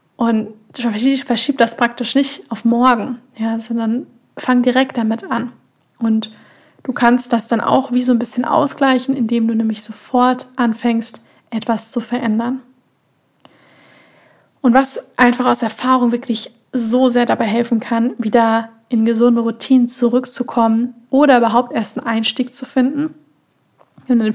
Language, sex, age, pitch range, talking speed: German, female, 20-39, 225-250 Hz, 135 wpm